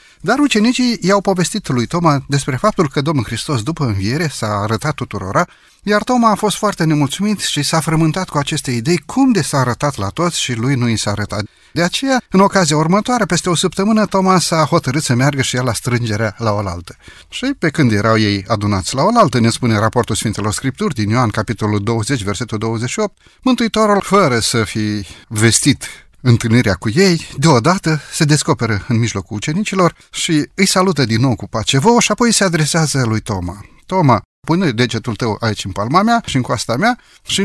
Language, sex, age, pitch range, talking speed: Romanian, male, 30-49, 110-160 Hz, 190 wpm